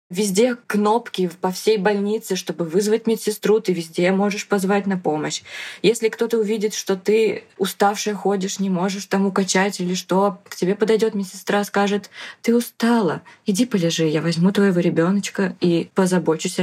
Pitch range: 170-205 Hz